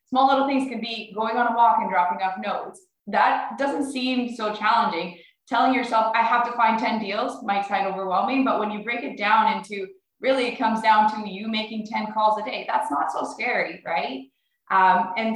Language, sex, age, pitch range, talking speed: English, female, 20-39, 185-230 Hz, 210 wpm